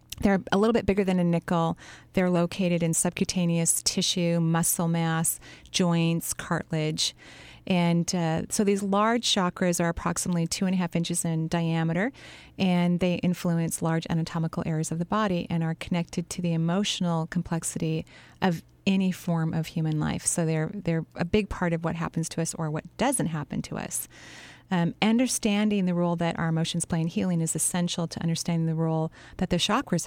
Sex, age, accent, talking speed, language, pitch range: female, 30-49, American, 180 wpm, English, 165-185 Hz